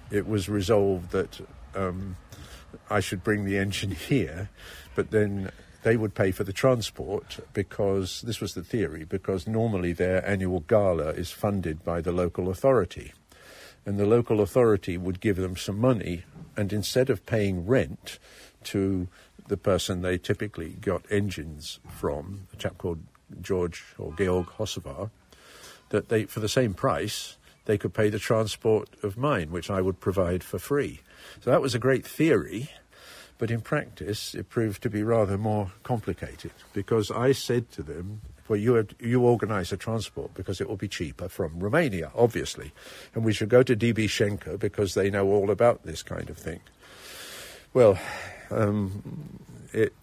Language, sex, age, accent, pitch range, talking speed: English, male, 50-69, British, 95-110 Hz, 165 wpm